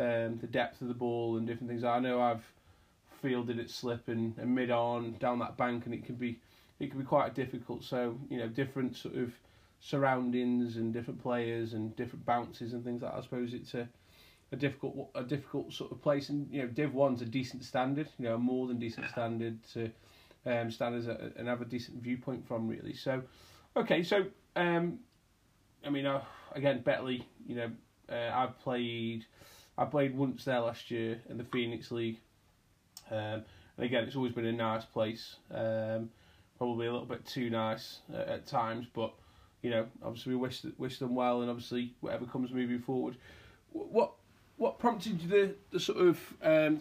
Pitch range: 115-135 Hz